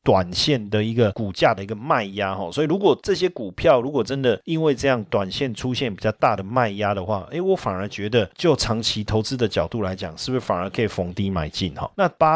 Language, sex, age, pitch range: Chinese, male, 30-49, 100-135 Hz